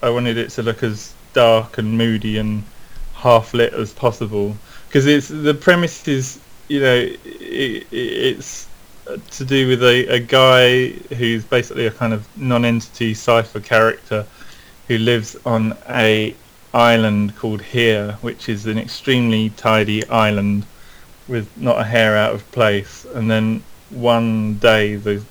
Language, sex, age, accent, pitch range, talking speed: English, male, 20-39, British, 105-125 Hz, 145 wpm